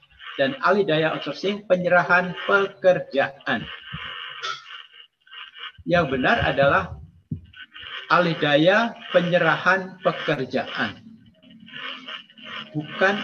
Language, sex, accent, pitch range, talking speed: Indonesian, male, native, 135-180 Hz, 55 wpm